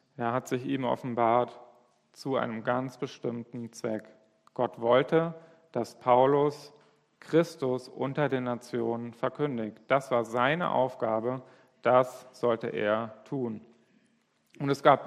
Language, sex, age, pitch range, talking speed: German, male, 40-59, 120-145 Hz, 120 wpm